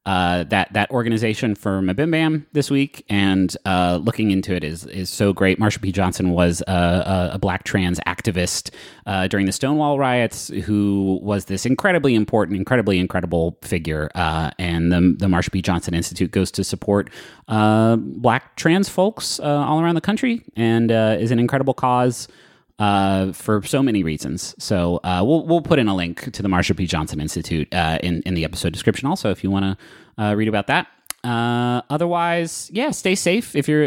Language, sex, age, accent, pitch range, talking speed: English, male, 30-49, American, 95-140 Hz, 190 wpm